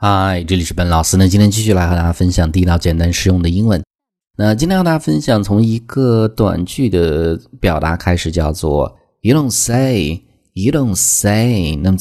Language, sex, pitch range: Chinese, male, 85-120 Hz